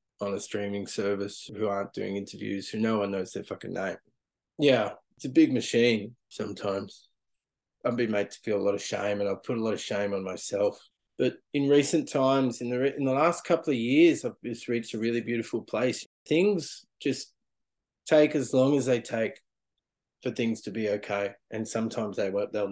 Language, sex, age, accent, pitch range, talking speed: English, male, 20-39, Australian, 105-135 Hz, 200 wpm